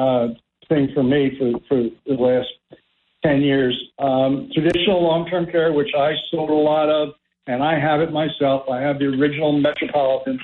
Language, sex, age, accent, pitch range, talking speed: English, male, 60-79, American, 135-160 Hz, 170 wpm